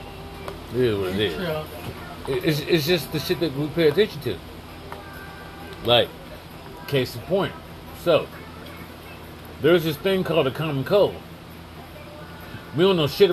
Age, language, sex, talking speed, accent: 50-69, English, male, 130 wpm, American